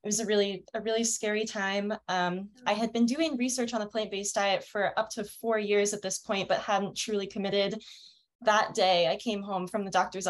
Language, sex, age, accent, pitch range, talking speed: English, female, 10-29, American, 185-220 Hz, 220 wpm